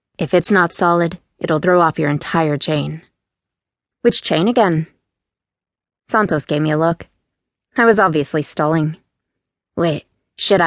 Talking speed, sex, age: 135 wpm, female, 30-49